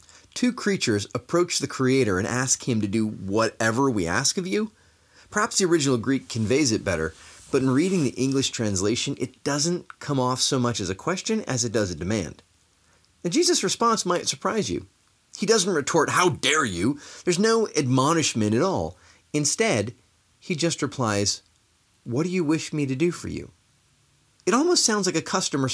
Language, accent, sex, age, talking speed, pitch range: English, American, male, 30-49, 180 wpm, 110-175 Hz